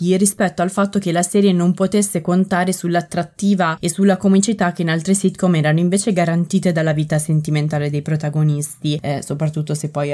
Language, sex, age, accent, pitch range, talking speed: Italian, female, 20-39, native, 155-190 Hz, 170 wpm